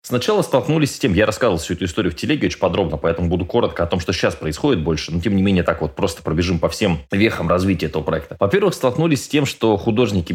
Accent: native